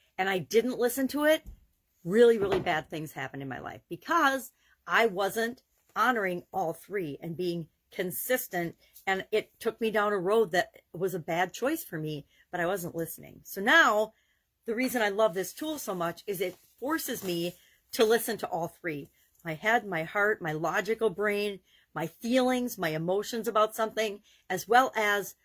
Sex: female